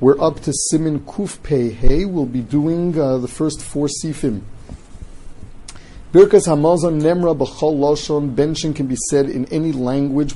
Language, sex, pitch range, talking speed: English, male, 125-160 Hz, 140 wpm